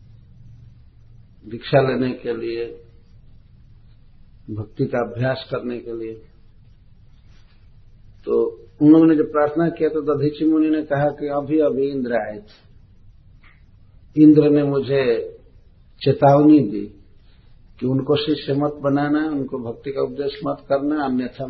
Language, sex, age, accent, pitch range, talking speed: Hindi, male, 50-69, native, 110-150 Hz, 115 wpm